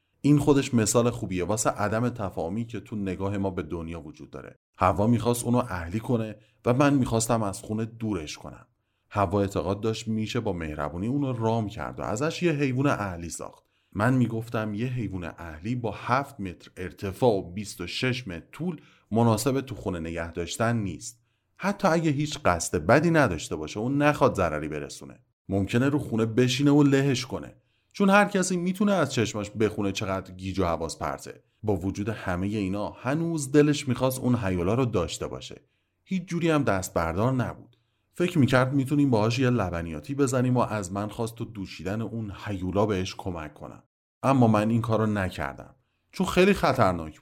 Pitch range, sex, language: 95-130 Hz, male, Persian